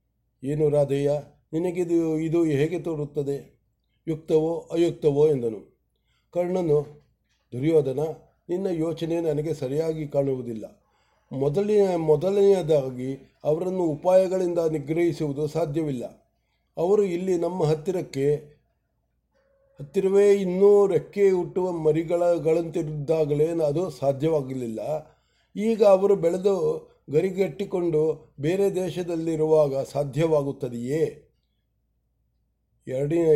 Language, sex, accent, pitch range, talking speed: English, male, Indian, 145-175 Hz, 90 wpm